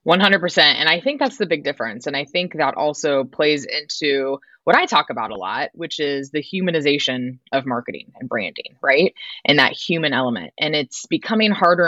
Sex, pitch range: female, 135-180 Hz